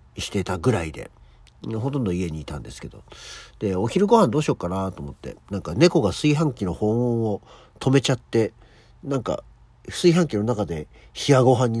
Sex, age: male, 50-69